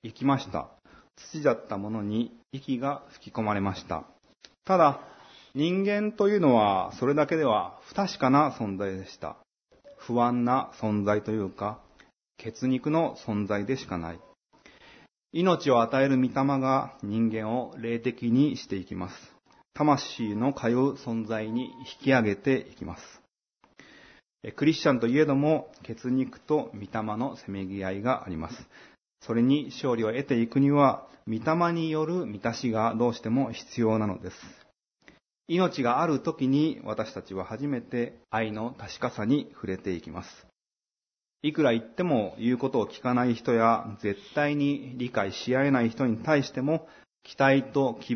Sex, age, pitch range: male, 30-49, 110-140 Hz